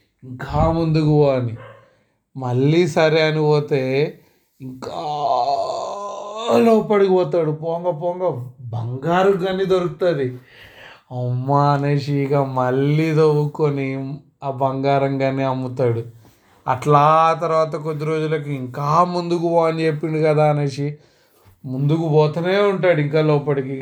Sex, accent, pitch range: male, native, 130-155 Hz